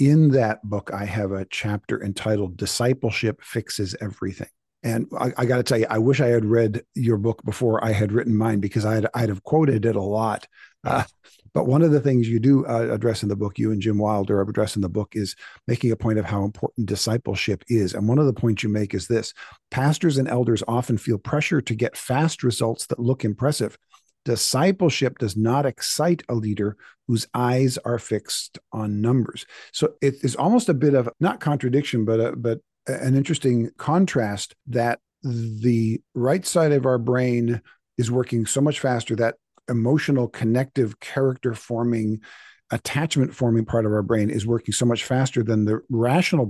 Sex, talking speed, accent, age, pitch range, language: male, 190 wpm, American, 50-69, 110-135 Hz, English